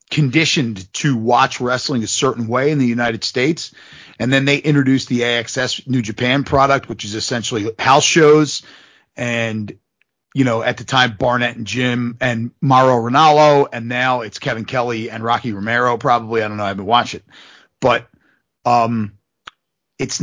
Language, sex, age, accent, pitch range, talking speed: English, male, 30-49, American, 115-145 Hz, 165 wpm